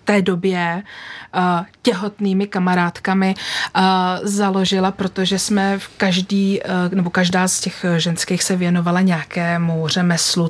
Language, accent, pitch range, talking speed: Czech, native, 175-200 Hz, 105 wpm